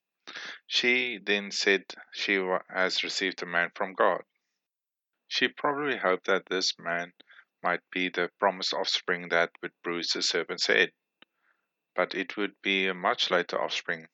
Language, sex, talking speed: English, male, 150 wpm